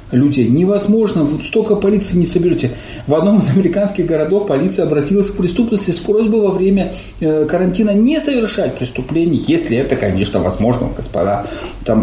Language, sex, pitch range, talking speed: Russian, male, 130-175 Hz, 150 wpm